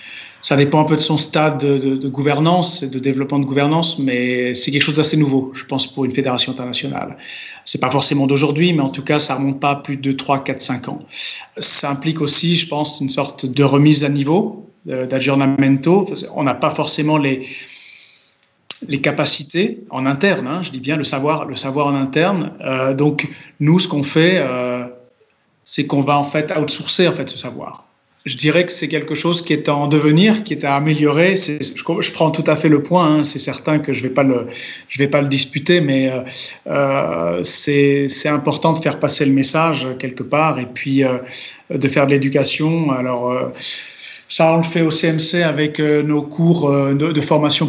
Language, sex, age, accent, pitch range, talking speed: French, male, 30-49, French, 135-155 Hz, 205 wpm